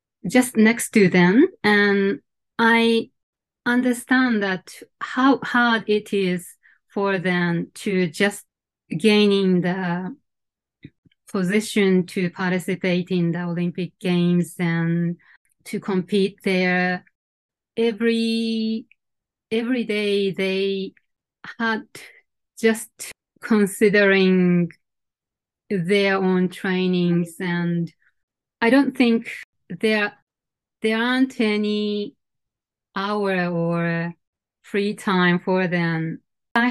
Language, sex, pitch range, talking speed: English, female, 180-230 Hz, 90 wpm